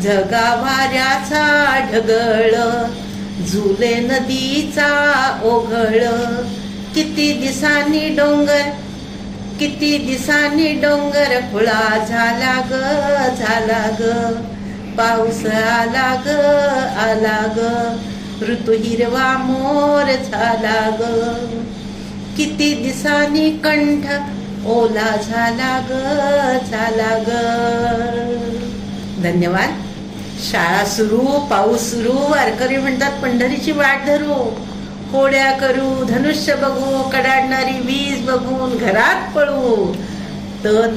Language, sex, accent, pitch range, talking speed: English, female, Indian, 220-275 Hz, 70 wpm